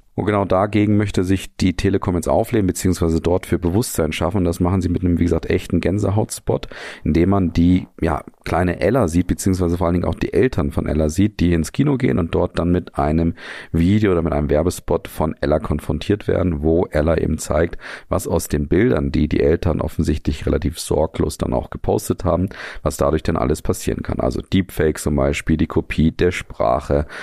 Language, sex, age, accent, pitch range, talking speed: German, male, 40-59, German, 75-90 Hz, 200 wpm